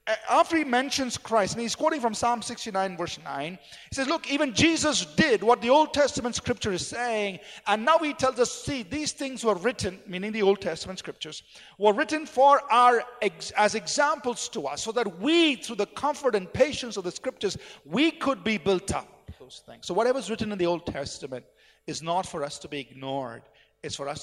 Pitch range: 150-240 Hz